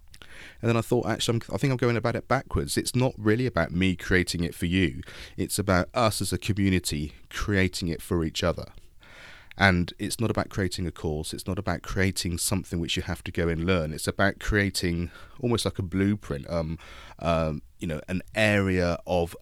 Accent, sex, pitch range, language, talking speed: British, male, 85-100 Hz, English, 205 wpm